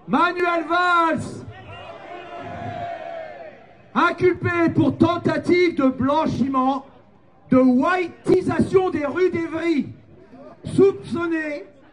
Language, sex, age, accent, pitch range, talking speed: French, male, 40-59, French, 260-335 Hz, 65 wpm